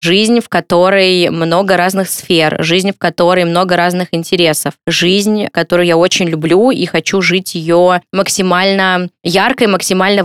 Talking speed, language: 145 wpm, Russian